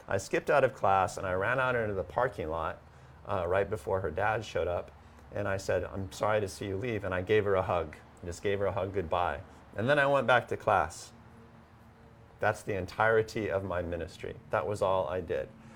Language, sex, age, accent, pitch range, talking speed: English, male, 40-59, American, 95-110 Hz, 225 wpm